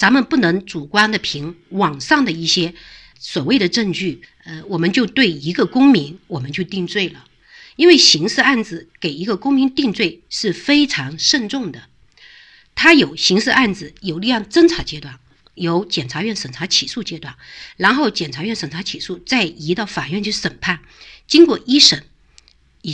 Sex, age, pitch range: female, 50-69, 165-275 Hz